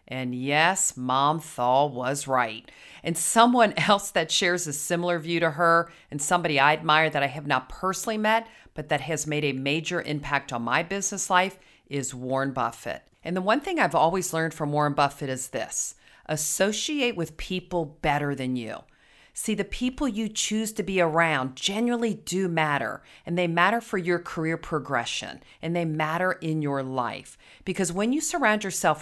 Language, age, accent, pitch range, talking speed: English, 40-59, American, 145-195 Hz, 180 wpm